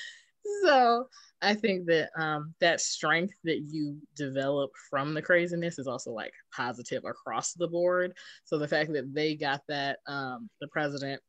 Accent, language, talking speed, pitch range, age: American, English, 160 wpm, 140-170 Hz, 20-39